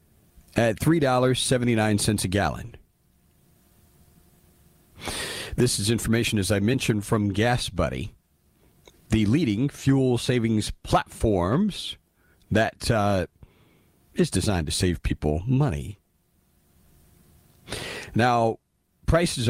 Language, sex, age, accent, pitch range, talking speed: English, male, 40-59, American, 100-135 Hz, 85 wpm